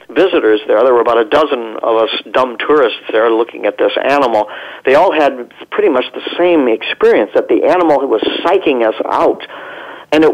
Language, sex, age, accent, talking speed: English, male, 50-69, American, 190 wpm